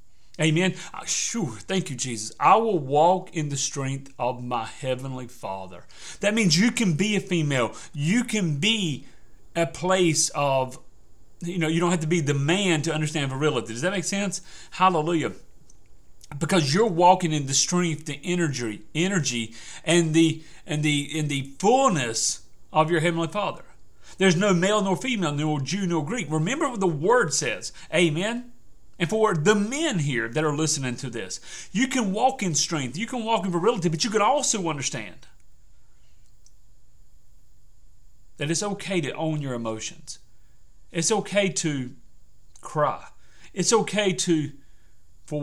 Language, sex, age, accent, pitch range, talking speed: English, male, 40-59, American, 130-185 Hz, 160 wpm